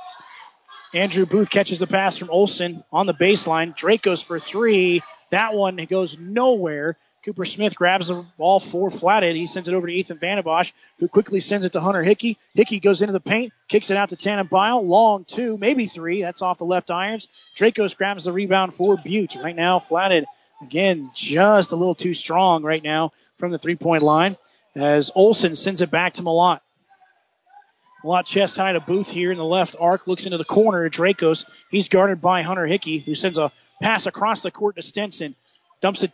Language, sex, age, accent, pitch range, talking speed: English, male, 30-49, American, 175-205 Hz, 200 wpm